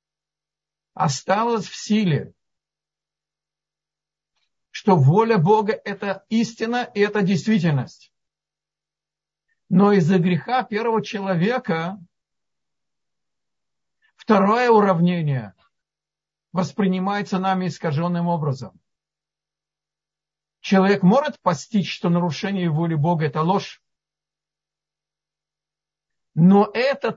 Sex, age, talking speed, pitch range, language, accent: male, 50-69, 75 wpm, 155-205 Hz, Russian, native